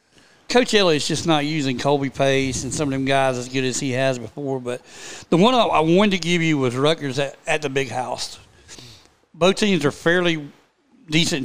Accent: American